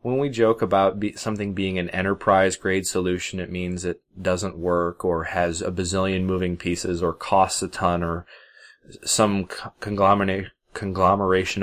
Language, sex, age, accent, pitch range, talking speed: English, male, 20-39, American, 95-115 Hz, 145 wpm